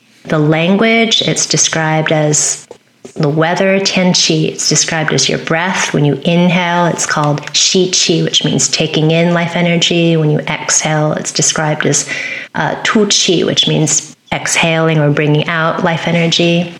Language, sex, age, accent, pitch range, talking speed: English, female, 30-49, American, 155-185 Hz, 155 wpm